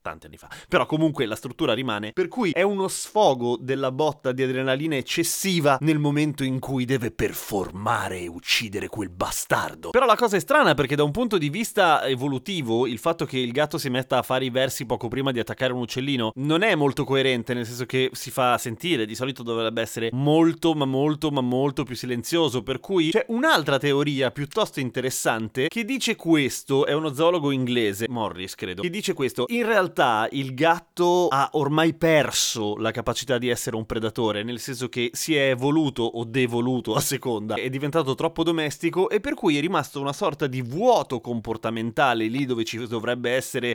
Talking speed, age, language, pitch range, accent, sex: 190 wpm, 30-49, Italian, 120-160 Hz, native, male